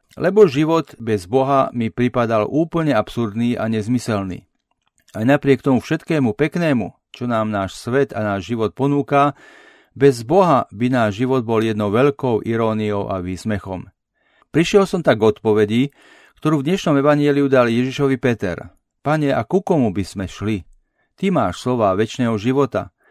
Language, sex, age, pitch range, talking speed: Slovak, male, 40-59, 110-140 Hz, 150 wpm